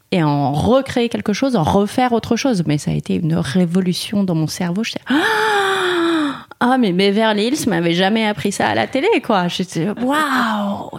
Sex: female